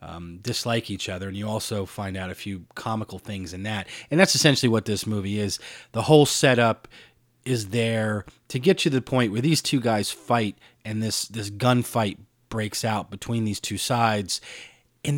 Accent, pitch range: American, 105-135 Hz